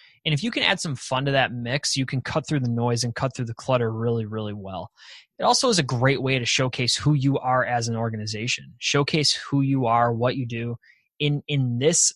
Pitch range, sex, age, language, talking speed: 120-150 Hz, male, 20-39, English, 235 wpm